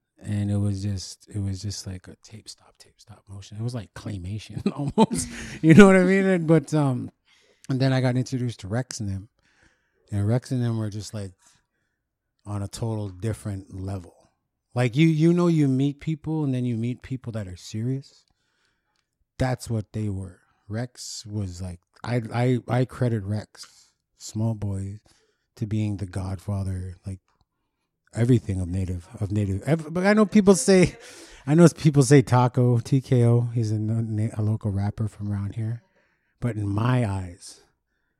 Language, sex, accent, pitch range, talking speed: English, male, American, 100-125 Hz, 175 wpm